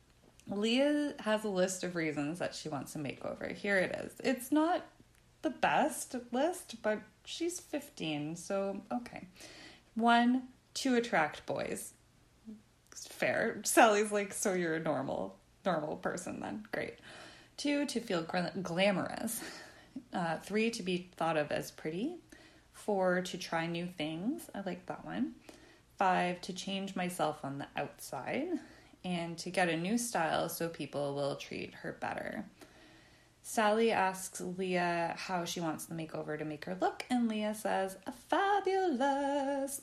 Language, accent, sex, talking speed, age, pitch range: English, American, female, 145 wpm, 20-39, 170-255 Hz